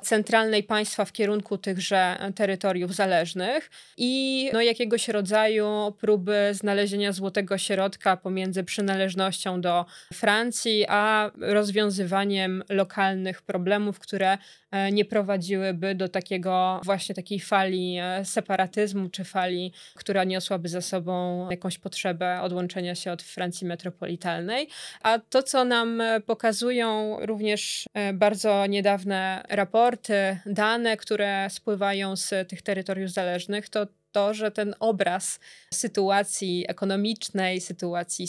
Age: 20-39